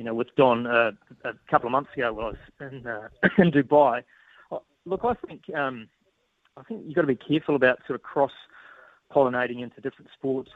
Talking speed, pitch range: 210 wpm, 120-145 Hz